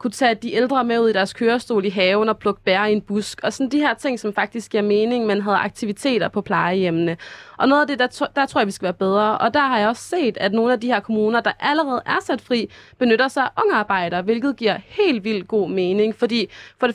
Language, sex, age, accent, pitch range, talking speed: Danish, female, 20-39, native, 195-240 Hz, 265 wpm